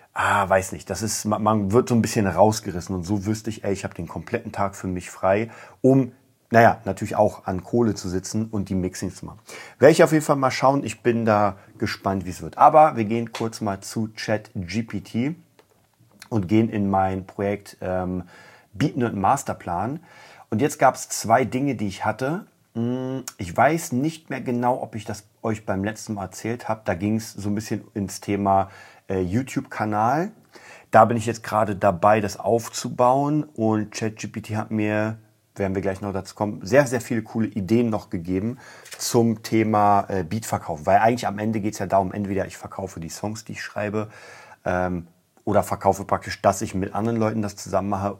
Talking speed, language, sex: 195 wpm, German, male